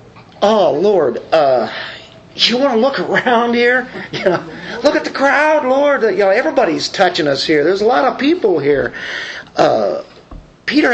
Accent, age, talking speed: American, 40-59, 165 wpm